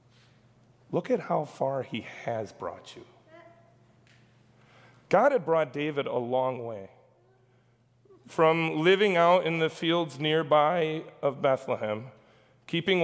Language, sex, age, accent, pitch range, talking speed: English, male, 30-49, American, 125-165 Hz, 115 wpm